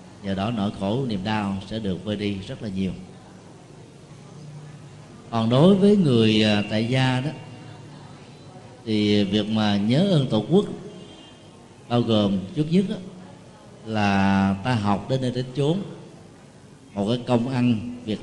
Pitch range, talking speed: 105-140 Hz, 145 wpm